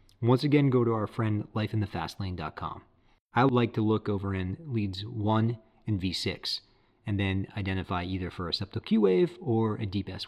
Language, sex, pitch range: English, male, 100-135 Hz